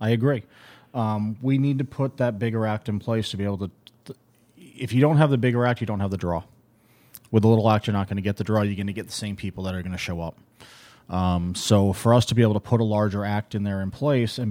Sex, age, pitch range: male, 30-49, 105-120 Hz